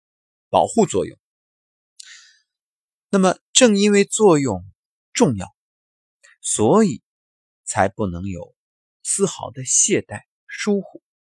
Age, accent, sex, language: 30-49, native, male, Chinese